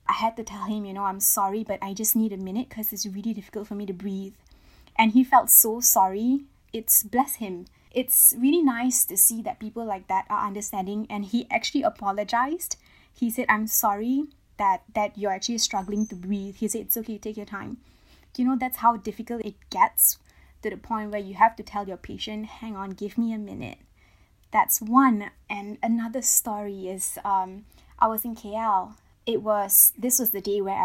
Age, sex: 20-39, female